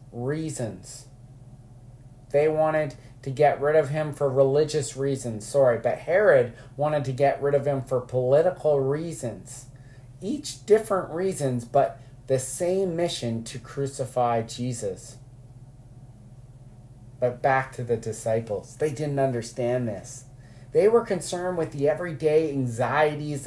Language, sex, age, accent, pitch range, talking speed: English, male, 30-49, American, 125-150 Hz, 125 wpm